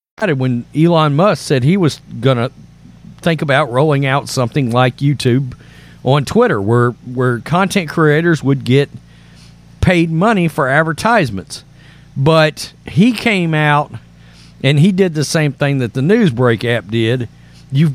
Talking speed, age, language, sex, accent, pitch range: 145 wpm, 40-59, English, male, American, 125-160 Hz